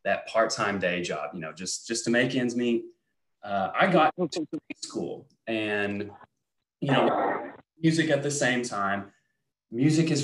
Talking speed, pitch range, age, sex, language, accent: 160 wpm, 100-145 Hz, 20-39, male, English, American